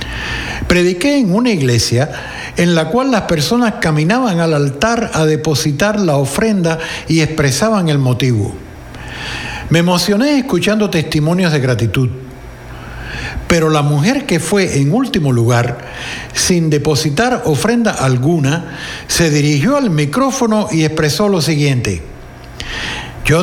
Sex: male